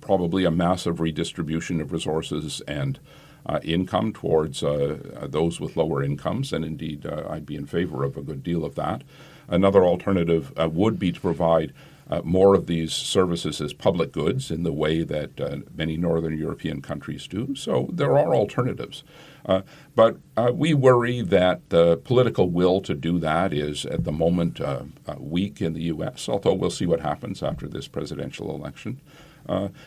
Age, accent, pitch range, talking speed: 50-69, American, 85-125 Hz, 175 wpm